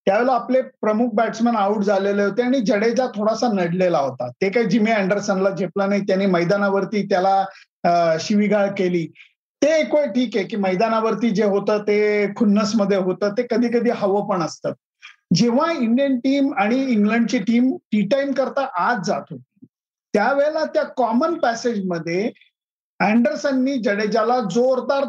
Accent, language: native, Marathi